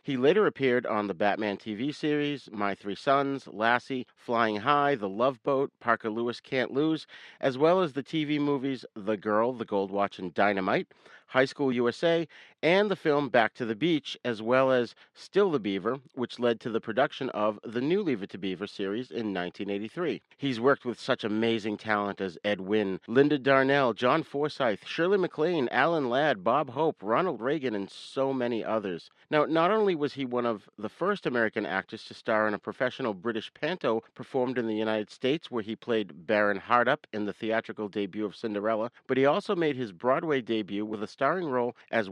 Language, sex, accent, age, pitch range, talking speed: English, male, American, 40-59, 110-140 Hz, 190 wpm